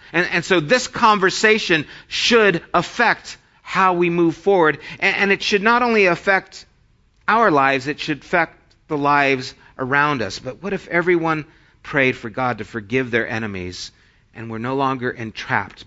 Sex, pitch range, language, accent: male, 145-195 Hz, English, American